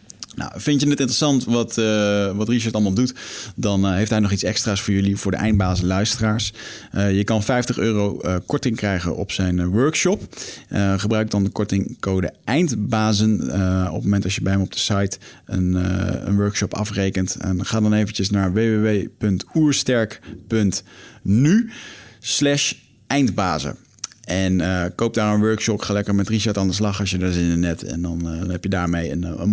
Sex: male